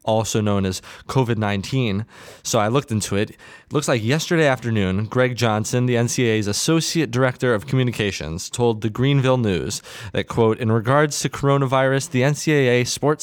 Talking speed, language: 160 wpm, English